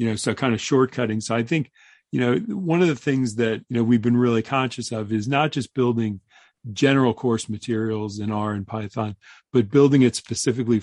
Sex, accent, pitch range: male, American, 110-120 Hz